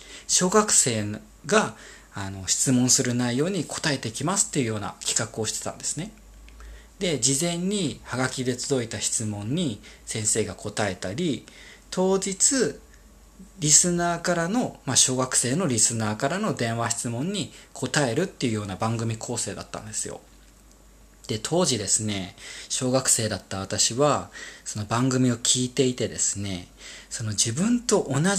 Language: Japanese